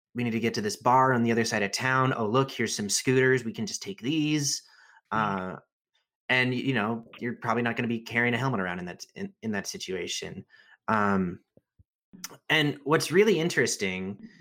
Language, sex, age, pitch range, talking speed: English, male, 30-49, 100-130 Hz, 200 wpm